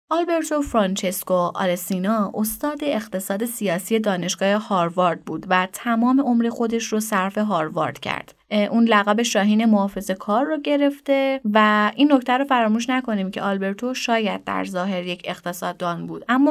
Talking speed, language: 140 wpm, Persian